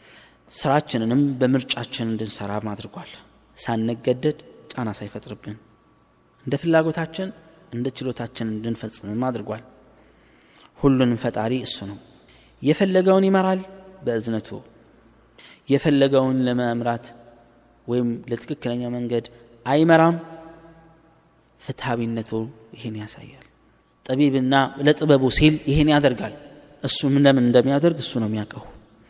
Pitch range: 115-145 Hz